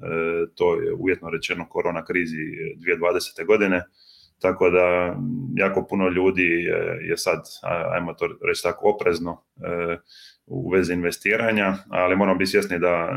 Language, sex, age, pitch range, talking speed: Croatian, male, 20-39, 85-100 Hz, 125 wpm